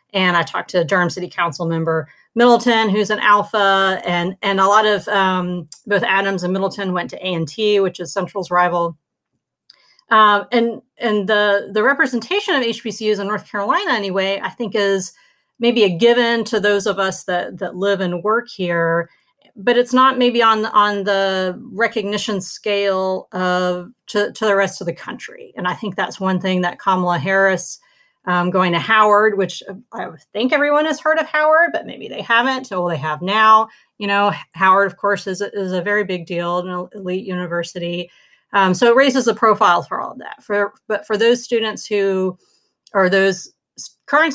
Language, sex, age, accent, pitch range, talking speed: English, female, 40-59, American, 180-215 Hz, 185 wpm